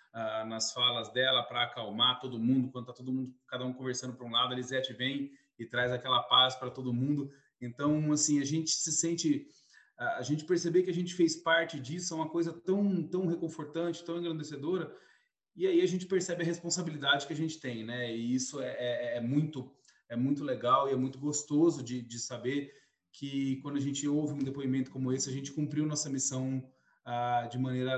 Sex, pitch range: male, 120-150 Hz